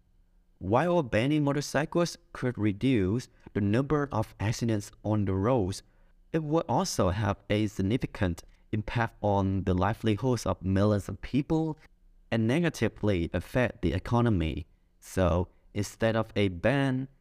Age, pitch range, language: 30-49, 95-130 Hz, Vietnamese